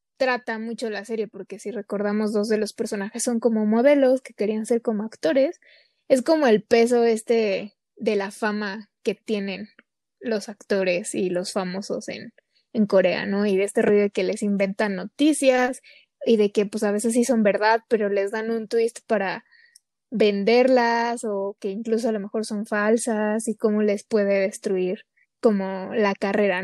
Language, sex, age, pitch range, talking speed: Spanish, female, 20-39, 205-250 Hz, 180 wpm